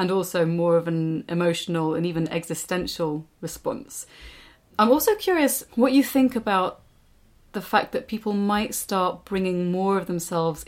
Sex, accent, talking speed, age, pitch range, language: female, British, 150 wpm, 30-49, 165-200 Hz, English